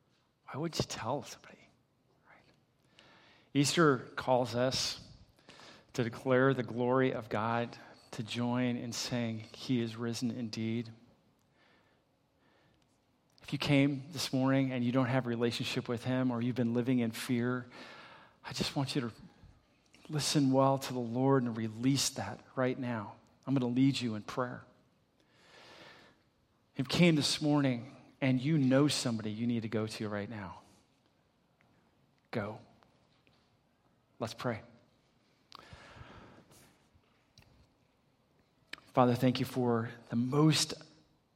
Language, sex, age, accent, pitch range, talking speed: English, male, 40-59, American, 120-140 Hz, 130 wpm